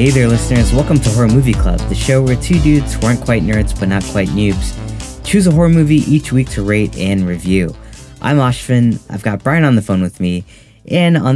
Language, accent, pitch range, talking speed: English, American, 105-135 Hz, 225 wpm